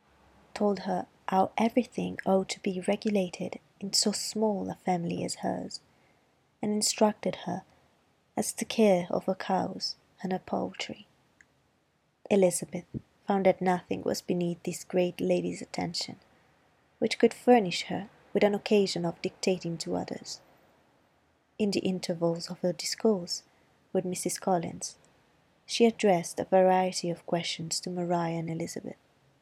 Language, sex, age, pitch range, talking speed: Italian, female, 20-39, 170-205 Hz, 135 wpm